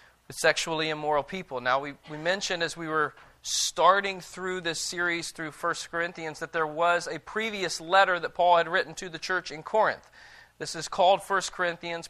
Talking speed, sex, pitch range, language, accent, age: 185 wpm, male, 170-215 Hz, English, American, 40-59